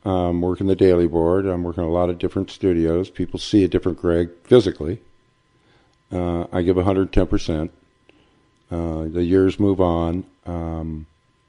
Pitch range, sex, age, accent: 80-95 Hz, male, 60-79, American